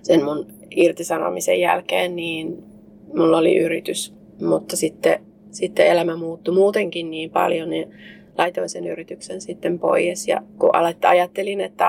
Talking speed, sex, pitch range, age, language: 130 wpm, female, 170-185 Hz, 30-49, Finnish